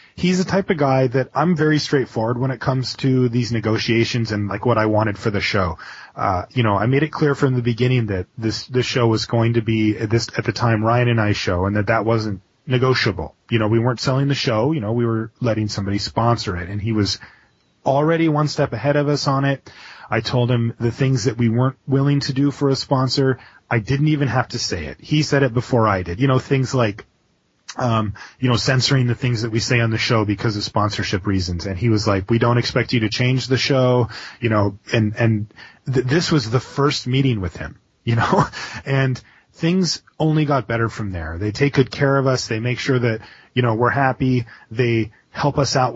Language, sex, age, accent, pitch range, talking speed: English, male, 30-49, American, 110-135 Hz, 235 wpm